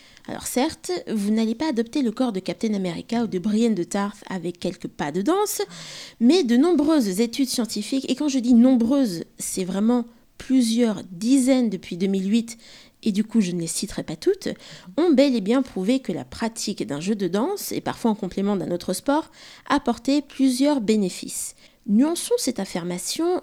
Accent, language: French, French